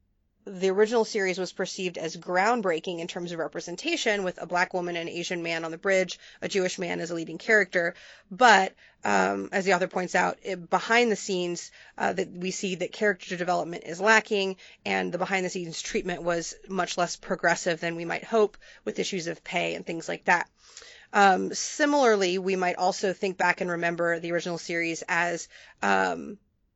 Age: 30-49